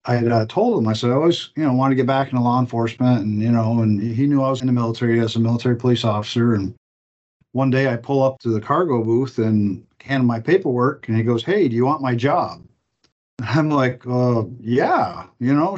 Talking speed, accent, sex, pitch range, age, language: 245 wpm, American, male, 115-130 Hz, 50-69, English